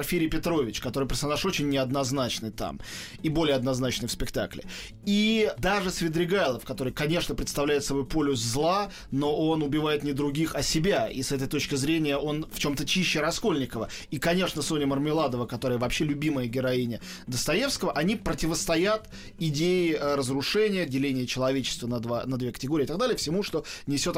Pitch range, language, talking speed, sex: 135-190 Hz, Russian, 155 wpm, male